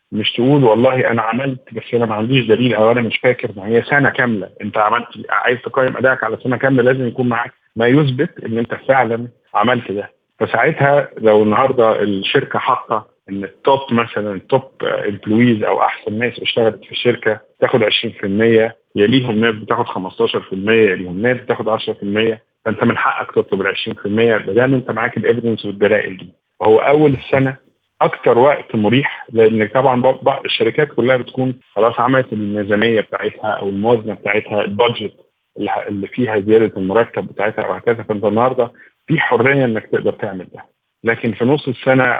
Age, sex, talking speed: 50-69, male, 160 wpm